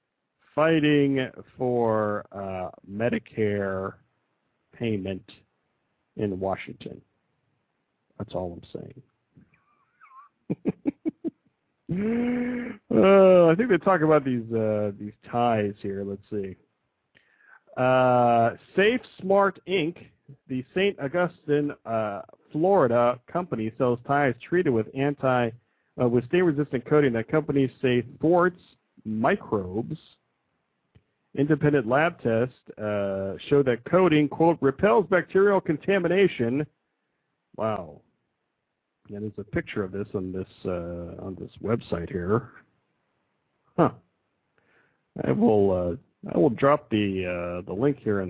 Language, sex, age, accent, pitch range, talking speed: English, male, 40-59, American, 105-160 Hz, 110 wpm